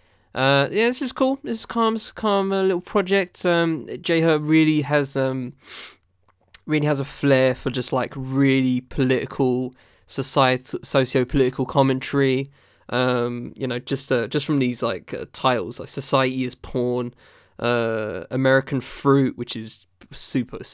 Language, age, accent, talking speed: English, 20-39, British, 150 wpm